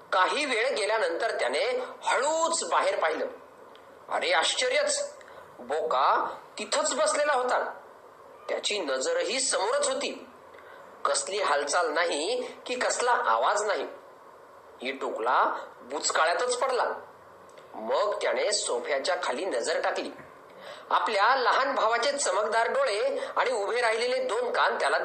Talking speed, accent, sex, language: 110 wpm, native, male, Marathi